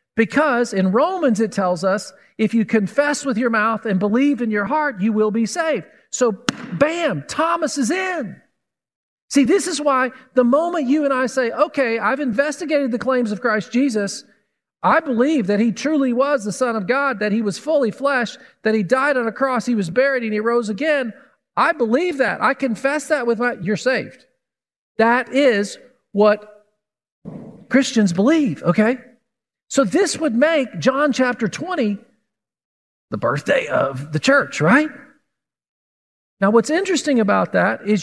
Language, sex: English, male